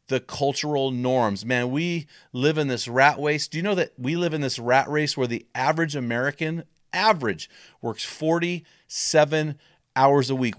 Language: English